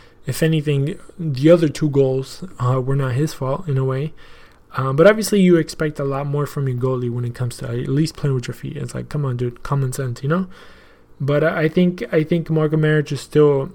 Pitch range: 130-155 Hz